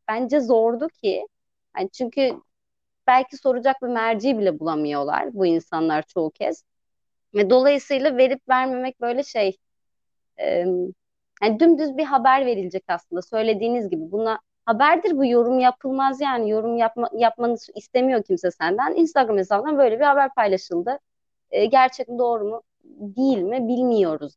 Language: Turkish